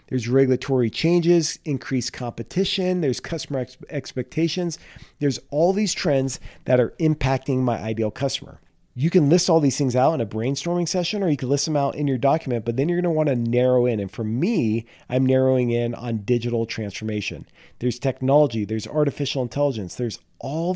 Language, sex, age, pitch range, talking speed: English, male, 40-59, 120-145 Hz, 180 wpm